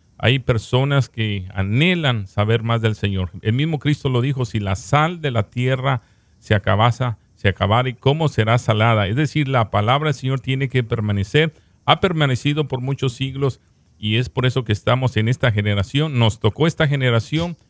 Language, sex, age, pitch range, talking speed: Spanish, male, 40-59, 105-135 Hz, 185 wpm